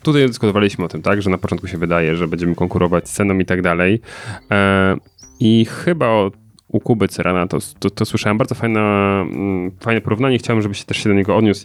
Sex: male